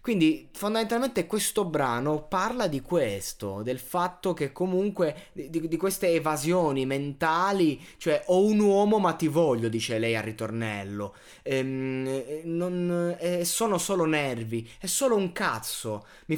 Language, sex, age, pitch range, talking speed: Italian, male, 20-39, 125-175 Hz, 135 wpm